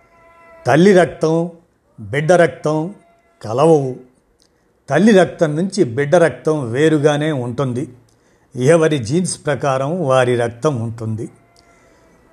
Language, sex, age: Telugu, male, 50-69